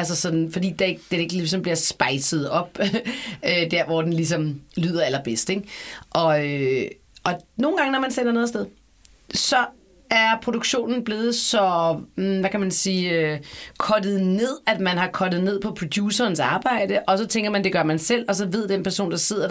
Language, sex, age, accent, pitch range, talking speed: Danish, female, 30-49, native, 165-210 Hz, 180 wpm